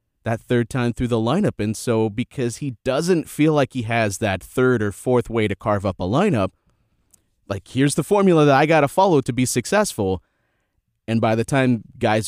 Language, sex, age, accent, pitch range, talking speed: English, male, 30-49, American, 115-160 Hz, 205 wpm